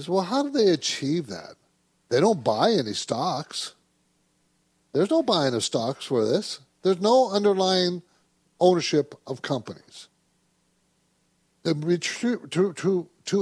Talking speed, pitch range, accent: 110 wpm, 155-210 Hz, American